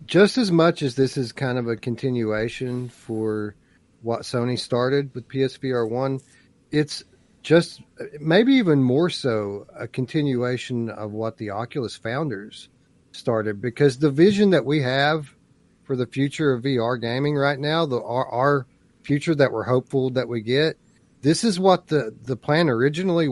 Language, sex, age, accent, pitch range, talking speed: English, male, 40-59, American, 115-145 Hz, 155 wpm